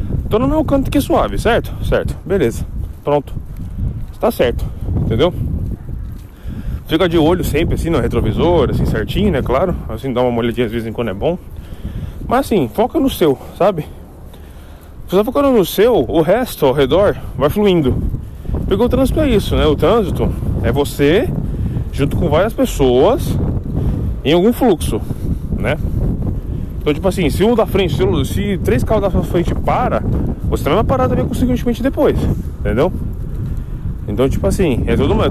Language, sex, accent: Portuguese, male, Brazilian